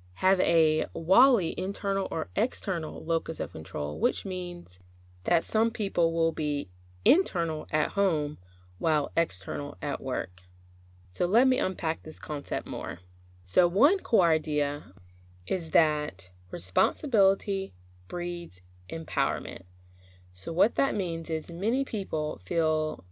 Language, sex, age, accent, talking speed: English, female, 20-39, American, 120 wpm